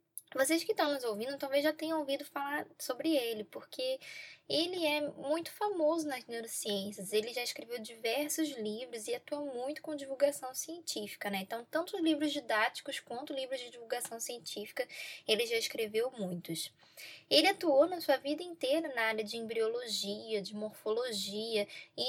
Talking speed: 155 wpm